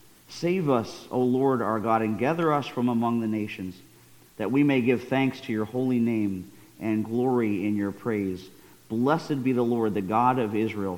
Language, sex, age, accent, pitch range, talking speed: English, male, 50-69, American, 100-125 Hz, 190 wpm